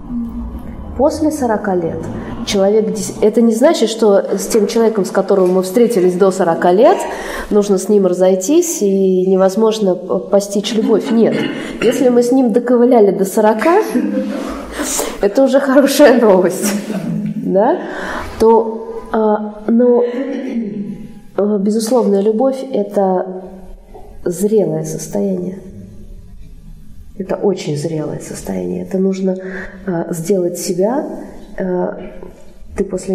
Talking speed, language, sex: 105 wpm, Russian, female